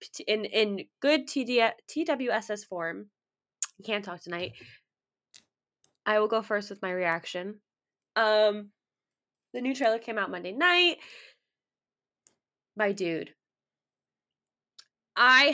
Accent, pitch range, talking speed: American, 180-220 Hz, 105 wpm